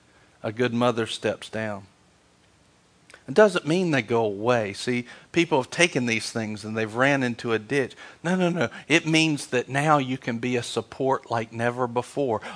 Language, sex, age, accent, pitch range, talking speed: English, male, 50-69, American, 110-140 Hz, 180 wpm